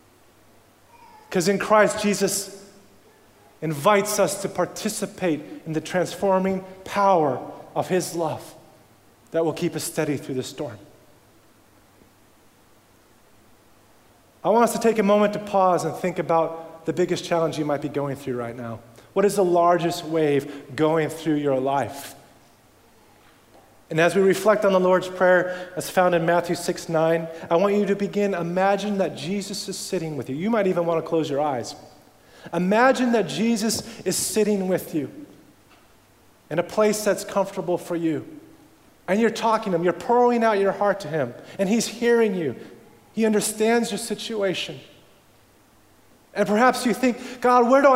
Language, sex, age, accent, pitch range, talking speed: English, male, 30-49, American, 150-205 Hz, 160 wpm